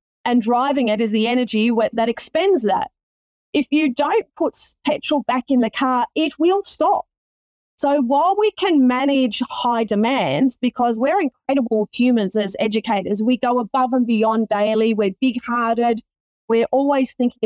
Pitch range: 225-275 Hz